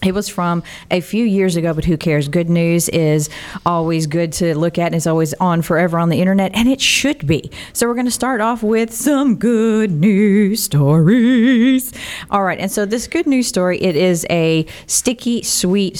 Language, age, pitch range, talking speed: English, 40-59, 165-205 Hz, 200 wpm